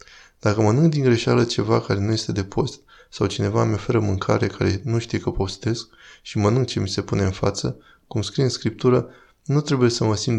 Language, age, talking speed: Romanian, 20-39, 215 wpm